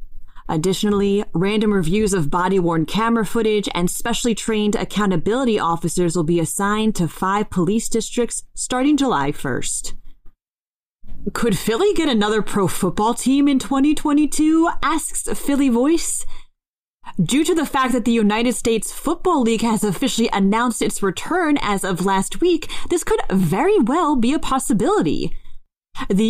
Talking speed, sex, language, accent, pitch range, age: 135 wpm, female, English, American, 190-280 Hz, 30-49